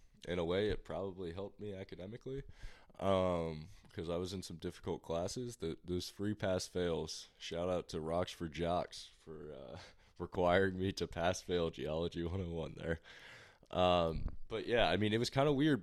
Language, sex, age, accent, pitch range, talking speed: English, male, 20-39, American, 80-95 Hz, 160 wpm